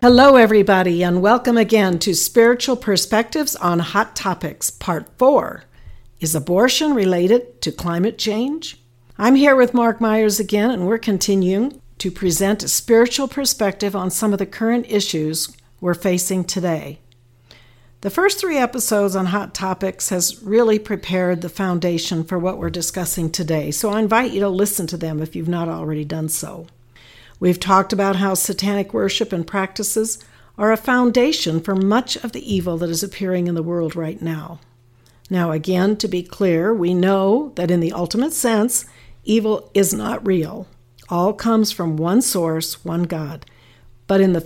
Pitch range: 170-220 Hz